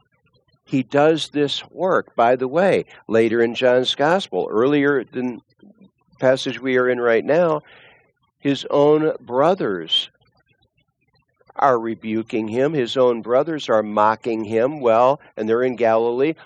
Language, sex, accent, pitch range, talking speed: English, male, American, 115-140 Hz, 135 wpm